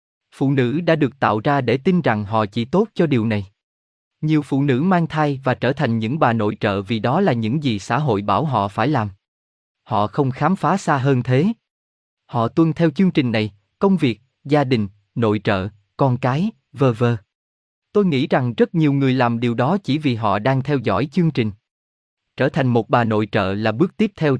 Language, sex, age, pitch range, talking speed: Vietnamese, male, 20-39, 110-155 Hz, 215 wpm